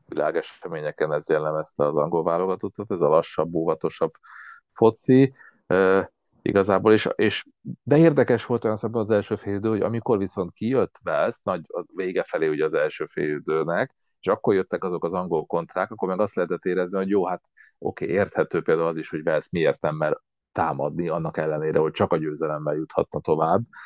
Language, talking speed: Hungarian, 180 wpm